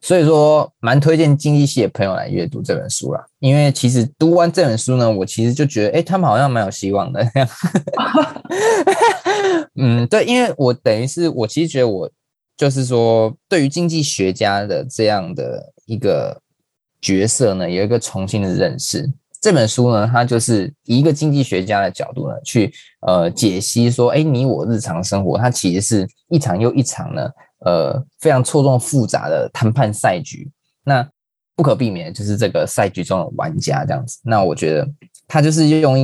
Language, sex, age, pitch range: Chinese, male, 20-39, 110-150 Hz